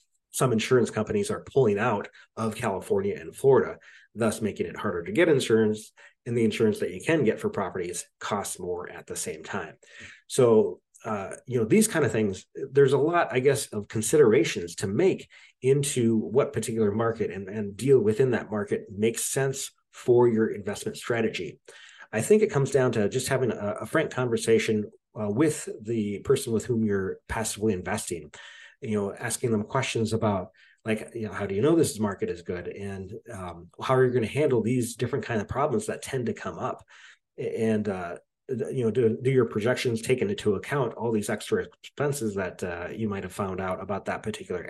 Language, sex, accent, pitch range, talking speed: English, male, American, 110-135 Hz, 195 wpm